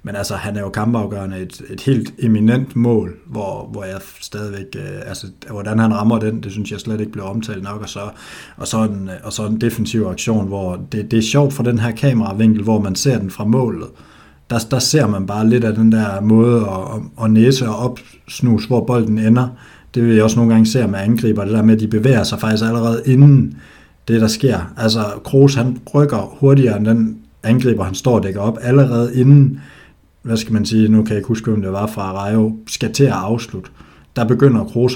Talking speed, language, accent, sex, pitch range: 215 wpm, Danish, native, male, 105-120 Hz